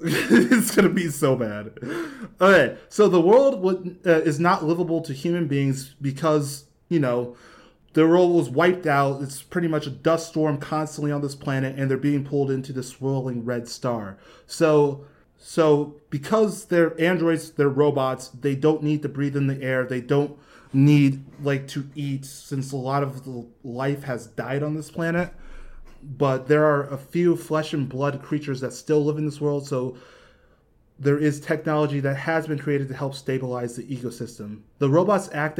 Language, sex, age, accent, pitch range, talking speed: English, male, 20-39, American, 130-155 Hz, 185 wpm